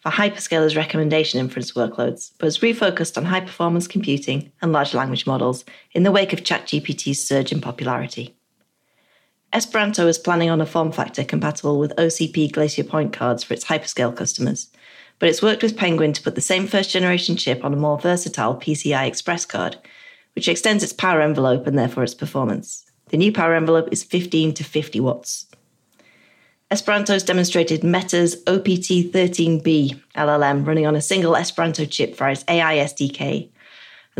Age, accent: 30-49, British